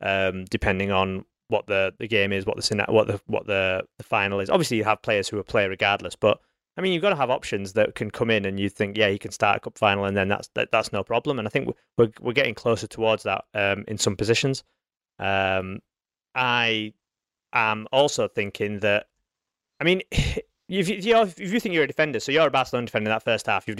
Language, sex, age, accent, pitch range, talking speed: English, male, 30-49, British, 100-130 Hz, 240 wpm